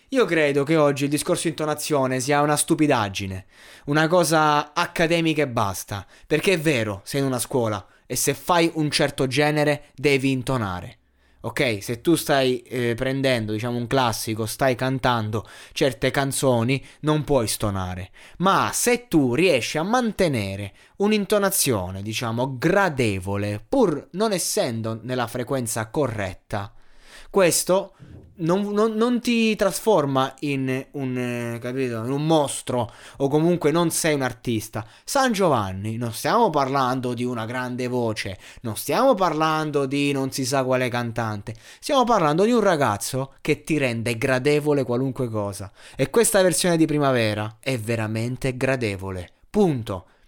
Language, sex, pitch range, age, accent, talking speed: Italian, male, 120-155 Hz, 20-39, native, 140 wpm